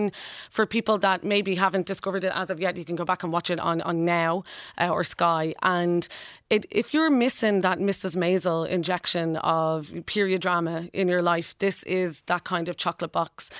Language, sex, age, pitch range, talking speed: English, female, 30-49, 170-195 Hz, 195 wpm